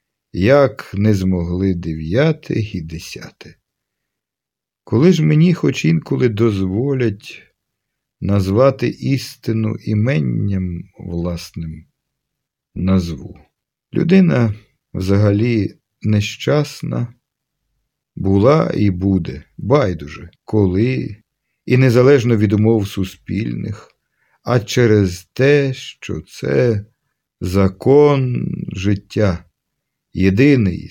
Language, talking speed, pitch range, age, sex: Ukrainian, 75 wpm, 95-130 Hz, 50-69, male